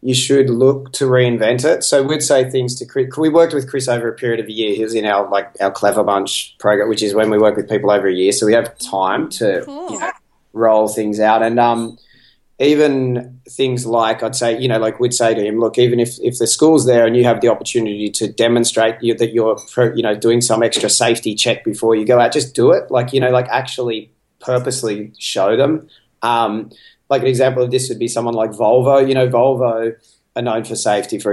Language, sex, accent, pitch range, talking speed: English, male, Australian, 110-130 Hz, 235 wpm